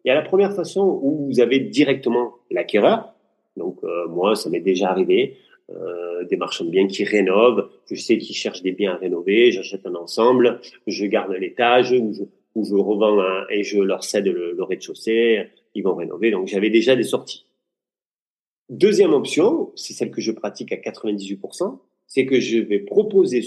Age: 30-49